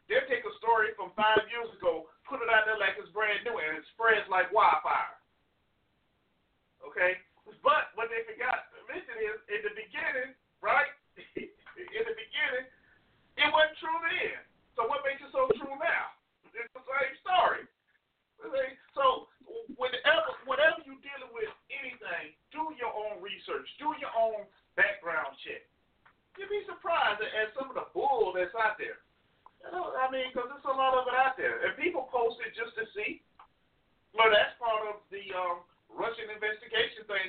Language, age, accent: English, 40-59, American